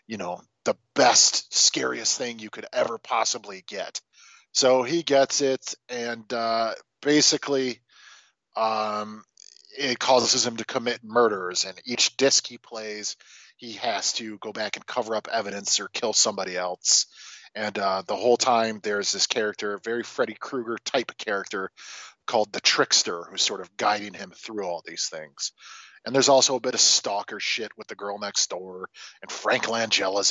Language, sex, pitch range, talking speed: English, male, 105-165 Hz, 165 wpm